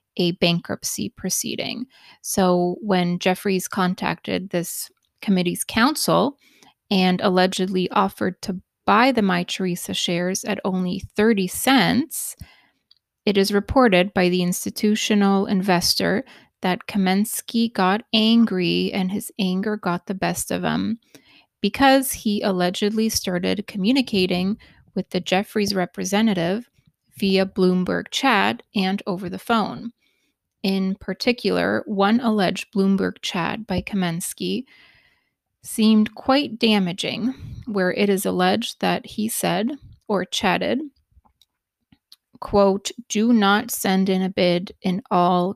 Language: English